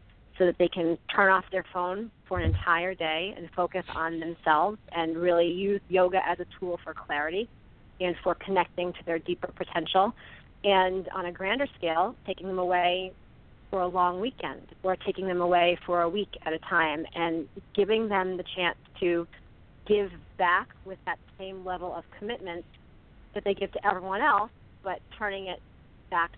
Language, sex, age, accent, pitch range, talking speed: English, female, 40-59, American, 165-185 Hz, 175 wpm